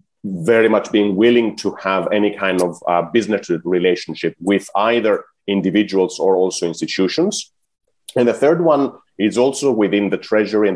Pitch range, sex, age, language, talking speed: 95-115 Hz, male, 30-49, English, 155 wpm